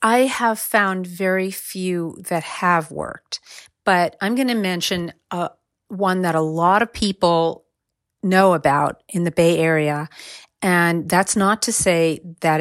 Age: 40-59